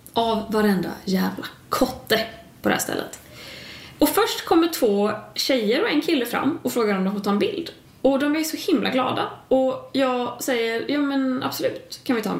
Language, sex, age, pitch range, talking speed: Swedish, female, 20-39, 200-295 Hz, 200 wpm